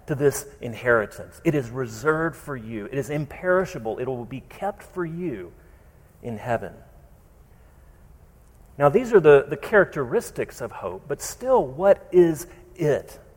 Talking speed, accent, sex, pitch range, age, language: 145 wpm, American, male, 120-185 Hz, 40-59, English